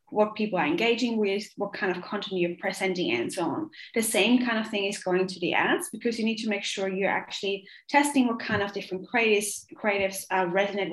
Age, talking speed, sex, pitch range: 20-39, 220 wpm, female, 185-215 Hz